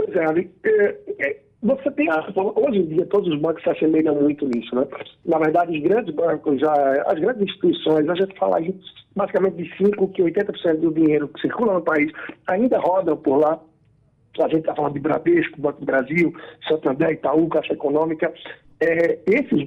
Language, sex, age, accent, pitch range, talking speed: Portuguese, male, 60-79, Brazilian, 150-195 Hz, 185 wpm